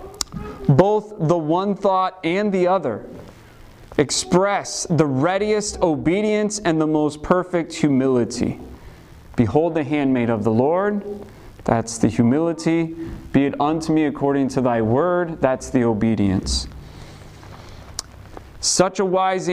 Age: 30-49